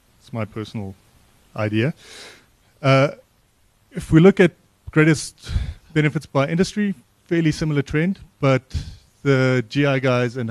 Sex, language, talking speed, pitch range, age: male, English, 115 wpm, 115-145 Hz, 30-49